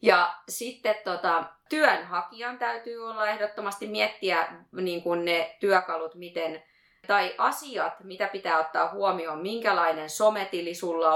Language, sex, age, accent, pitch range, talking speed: Finnish, female, 20-39, native, 160-215 Hz, 115 wpm